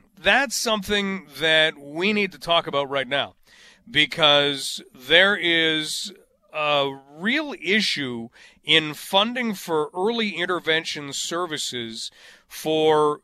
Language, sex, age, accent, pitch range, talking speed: English, male, 40-59, American, 155-215 Hz, 105 wpm